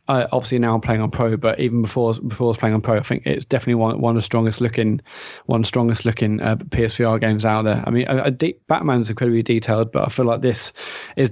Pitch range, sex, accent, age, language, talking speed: 115-125 Hz, male, British, 20-39, English, 255 wpm